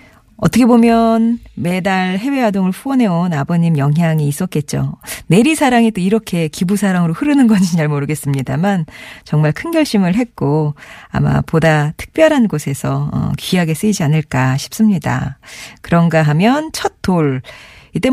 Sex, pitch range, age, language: female, 150-225 Hz, 40-59, Korean